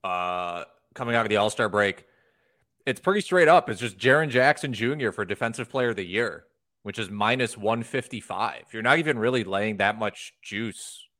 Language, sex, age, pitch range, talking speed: English, male, 30-49, 100-125 Hz, 190 wpm